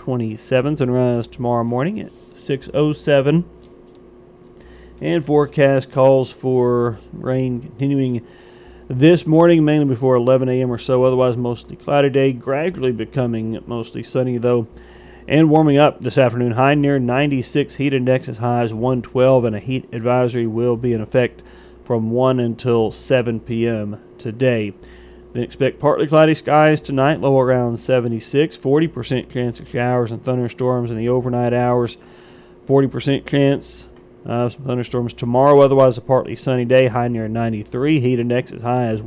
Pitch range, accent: 120-135 Hz, American